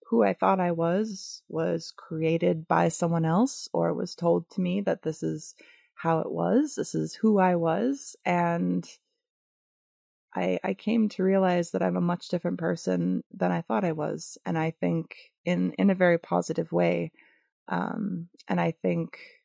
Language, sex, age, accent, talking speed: English, female, 20-39, American, 175 wpm